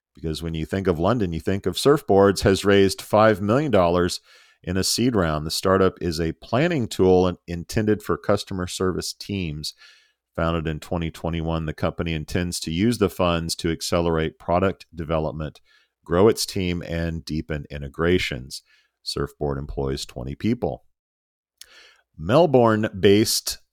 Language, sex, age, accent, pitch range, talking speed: English, male, 40-59, American, 80-100 Hz, 135 wpm